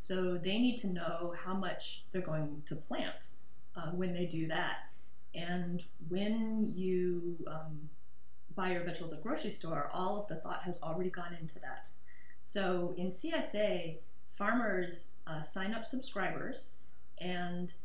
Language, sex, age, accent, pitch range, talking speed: English, female, 30-49, American, 150-185 Hz, 150 wpm